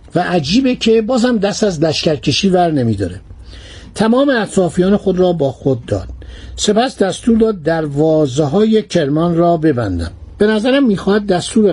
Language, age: Persian, 60-79